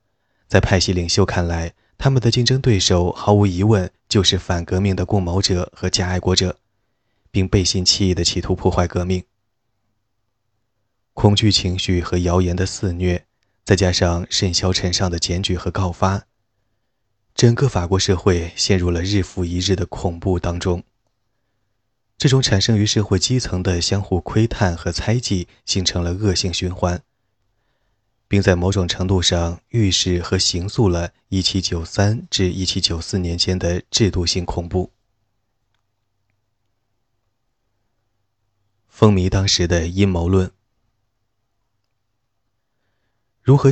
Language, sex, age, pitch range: Chinese, male, 20-39, 90-110 Hz